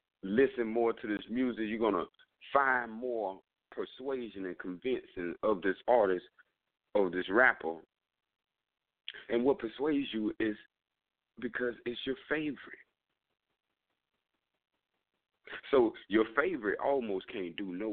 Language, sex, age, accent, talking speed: English, male, 50-69, American, 115 wpm